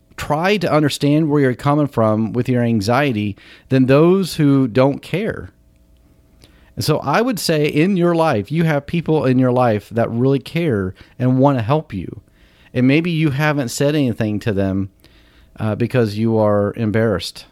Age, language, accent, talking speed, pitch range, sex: 40-59, English, American, 170 wpm, 100-145 Hz, male